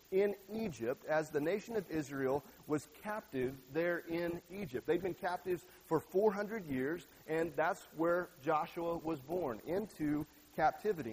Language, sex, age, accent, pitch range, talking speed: English, male, 40-59, American, 155-195 Hz, 140 wpm